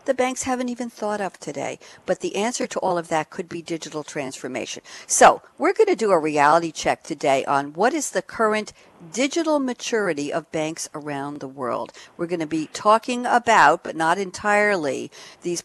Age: 60-79